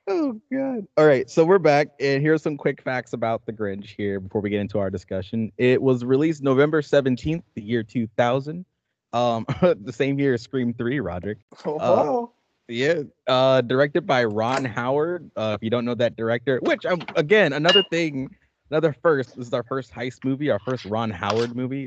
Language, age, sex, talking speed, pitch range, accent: English, 20-39, male, 200 wpm, 110-140 Hz, American